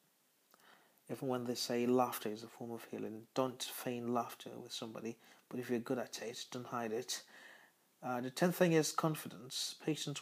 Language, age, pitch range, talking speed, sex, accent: English, 30-49, 120-135 Hz, 180 wpm, male, British